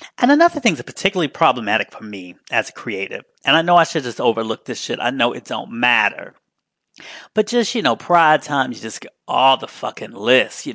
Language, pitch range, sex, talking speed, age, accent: English, 120-165 Hz, male, 220 wpm, 30-49, American